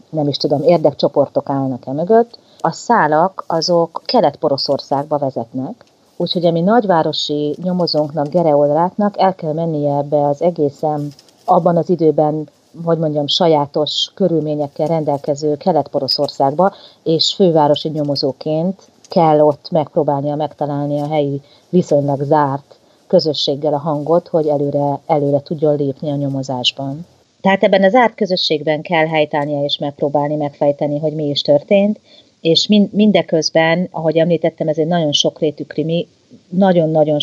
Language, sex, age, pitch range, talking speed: Hungarian, female, 40-59, 145-165 Hz, 120 wpm